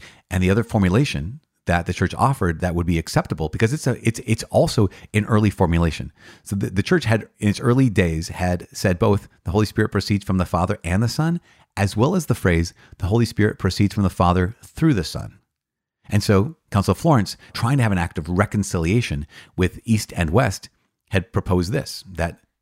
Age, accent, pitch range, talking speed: 30-49, American, 90-110 Hz, 205 wpm